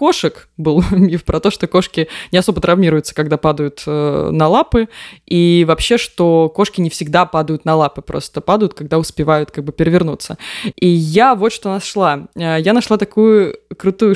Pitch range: 165-210 Hz